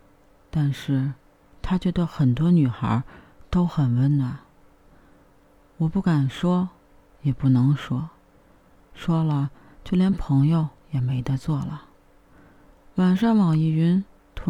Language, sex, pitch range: Chinese, female, 130-160 Hz